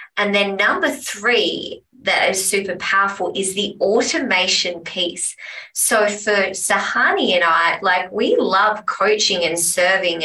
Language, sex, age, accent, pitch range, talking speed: English, female, 20-39, Australian, 175-215 Hz, 135 wpm